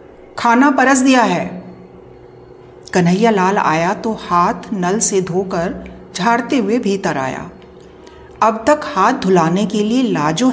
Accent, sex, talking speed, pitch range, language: native, female, 130 wpm, 180-250 Hz, Hindi